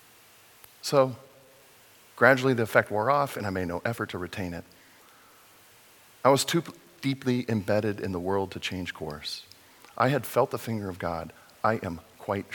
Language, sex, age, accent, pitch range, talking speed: English, male, 40-59, American, 100-135 Hz, 165 wpm